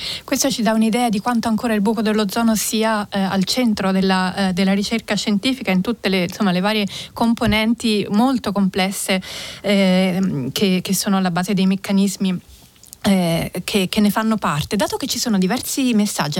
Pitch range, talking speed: 190-230 Hz, 175 wpm